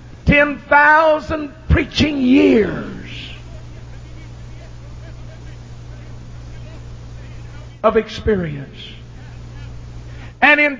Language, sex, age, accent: English, male, 60-79, American